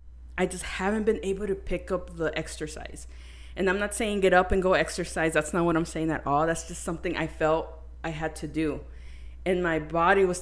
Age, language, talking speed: 20-39, English, 225 wpm